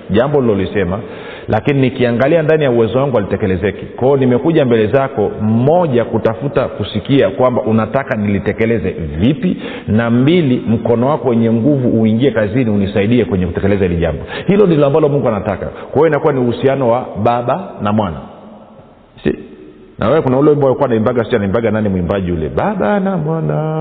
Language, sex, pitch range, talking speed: Swahili, male, 110-140 Hz, 155 wpm